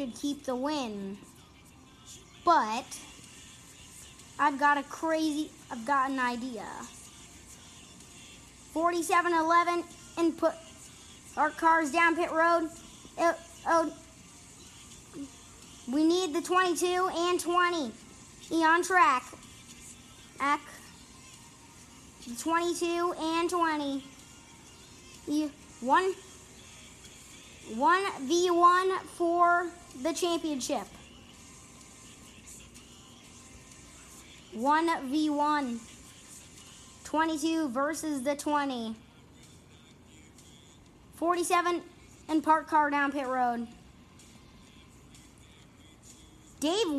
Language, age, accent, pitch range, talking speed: English, 30-49, American, 275-340 Hz, 70 wpm